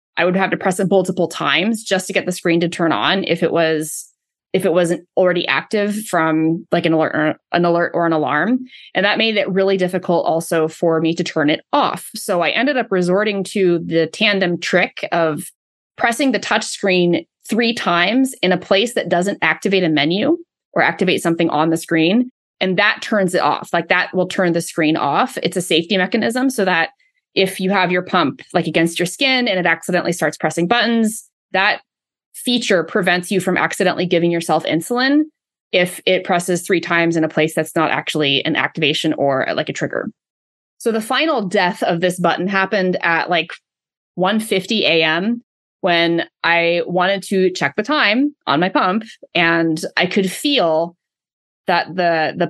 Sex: female